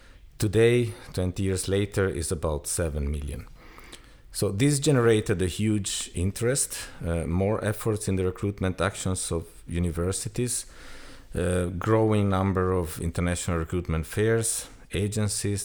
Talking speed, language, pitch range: 120 wpm, English, 75-95 Hz